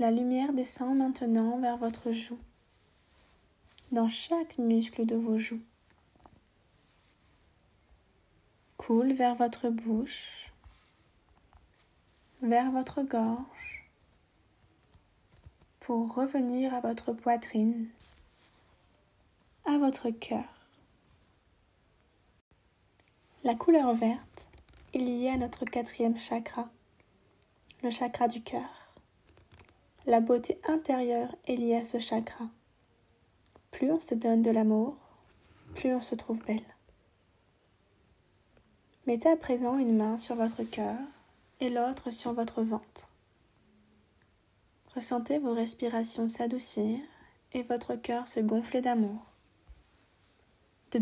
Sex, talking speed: female, 100 wpm